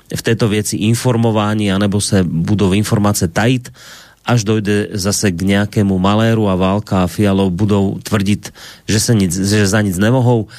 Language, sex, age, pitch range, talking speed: Slovak, male, 30-49, 100-120 Hz, 165 wpm